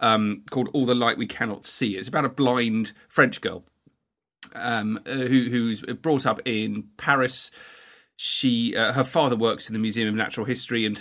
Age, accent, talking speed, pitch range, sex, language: 30-49, British, 180 wpm, 110-145 Hz, male, English